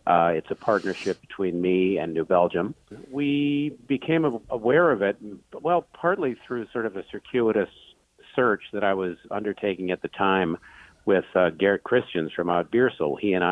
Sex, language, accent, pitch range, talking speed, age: male, English, American, 90-110 Hz, 170 wpm, 50-69